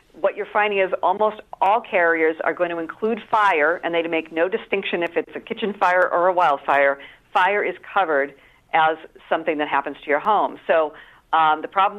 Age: 50-69